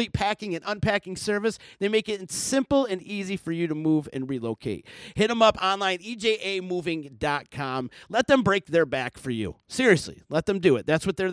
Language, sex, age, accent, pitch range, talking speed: English, male, 40-59, American, 145-205 Hz, 190 wpm